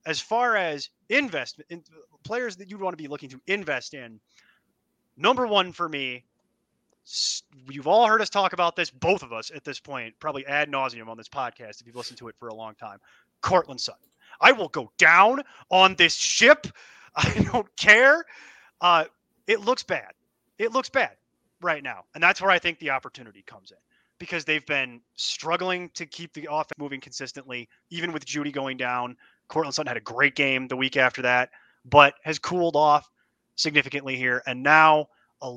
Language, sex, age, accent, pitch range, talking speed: English, male, 30-49, American, 130-170 Hz, 185 wpm